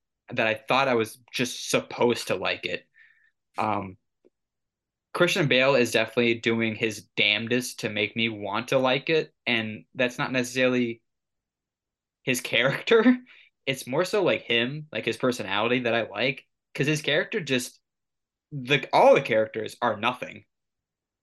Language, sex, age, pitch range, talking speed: English, male, 10-29, 110-130 Hz, 145 wpm